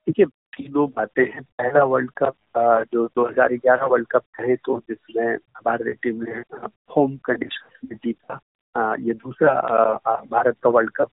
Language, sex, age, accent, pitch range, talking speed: Hindi, male, 50-69, native, 120-150 Hz, 150 wpm